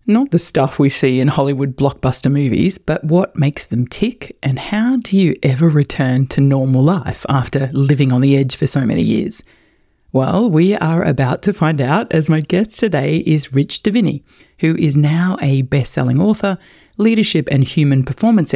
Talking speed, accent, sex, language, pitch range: 180 wpm, Australian, female, English, 135-175 Hz